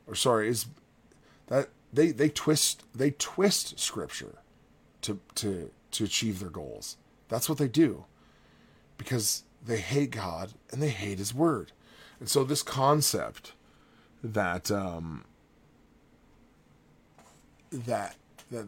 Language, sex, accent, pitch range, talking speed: English, male, American, 95-135 Hz, 120 wpm